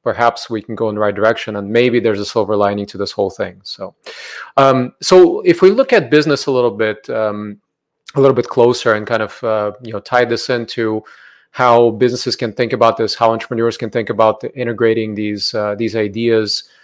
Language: English